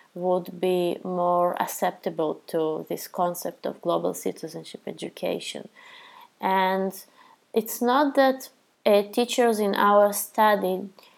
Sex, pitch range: female, 180-215 Hz